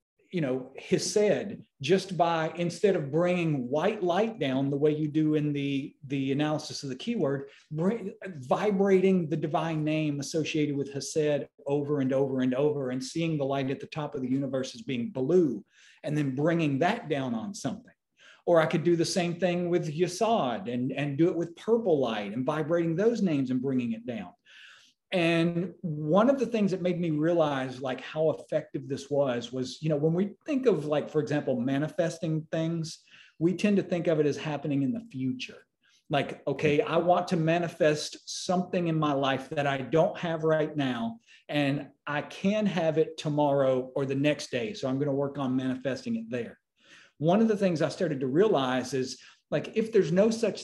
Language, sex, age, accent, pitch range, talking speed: English, male, 40-59, American, 140-175 Hz, 190 wpm